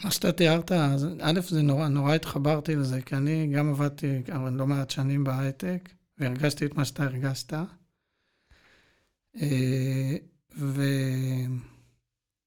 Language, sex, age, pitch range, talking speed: Hebrew, male, 60-79, 135-165 Hz, 120 wpm